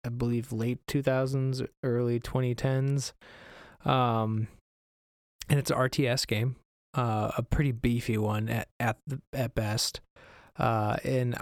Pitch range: 110-130 Hz